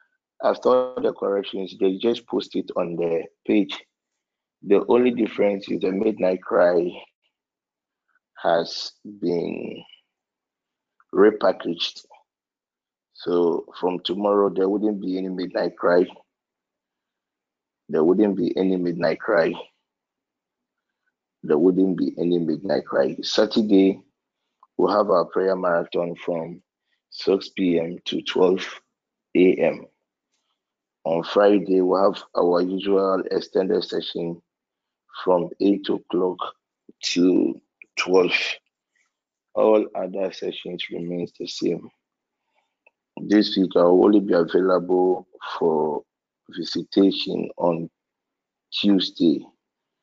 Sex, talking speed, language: male, 100 wpm, English